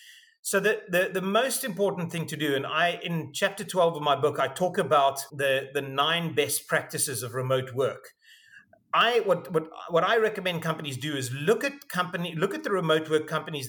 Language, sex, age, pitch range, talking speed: English, male, 30-49, 145-185 Hz, 200 wpm